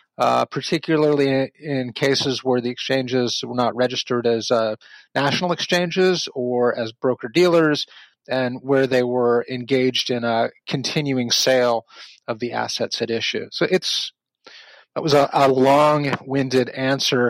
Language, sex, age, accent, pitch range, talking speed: English, male, 30-49, American, 120-145 Hz, 155 wpm